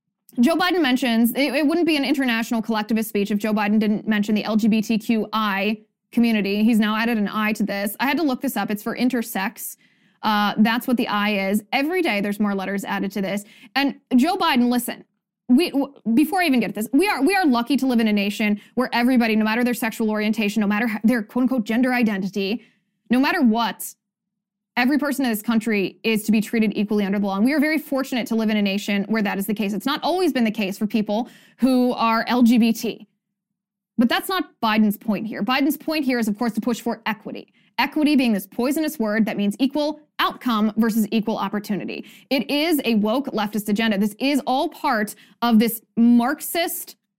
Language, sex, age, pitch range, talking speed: English, female, 20-39, 210-255 Hz, 215 wpm